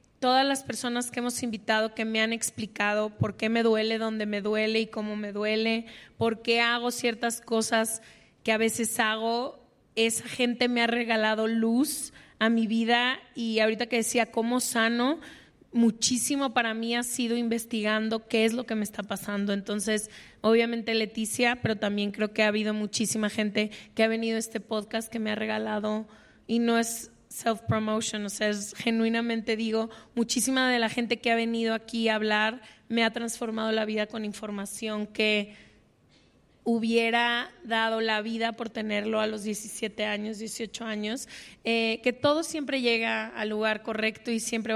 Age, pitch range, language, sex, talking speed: 20-39, 215-235 Hz, Spanish, female, 170 wpm